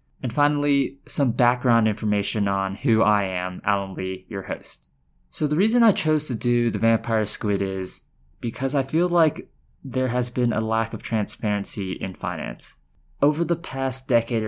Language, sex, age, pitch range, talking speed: English, male, 20-39, 100-125 Hz, 170 wpm